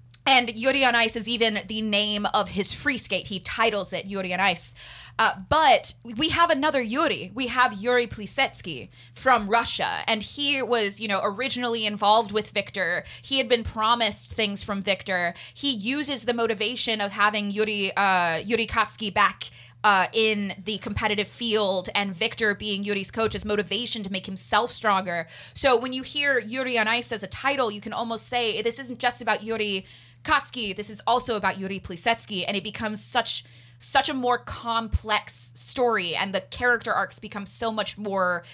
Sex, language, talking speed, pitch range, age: female, English, 180 wpm, 195-235 Hz, 20-39